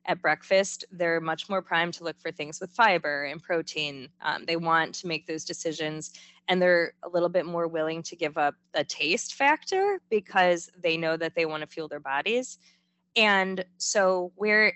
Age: 20-39